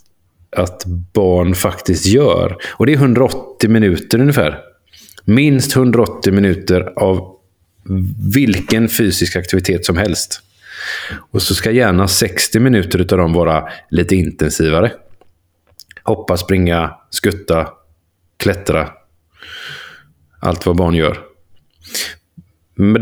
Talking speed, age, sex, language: 100 wpm, 30-49, male, Swedish